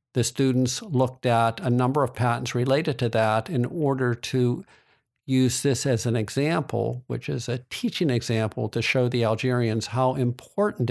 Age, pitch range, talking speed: 50-69, 115-130 Hz, 165 wpm